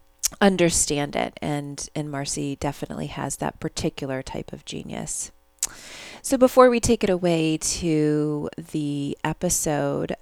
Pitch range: 150-180 Hz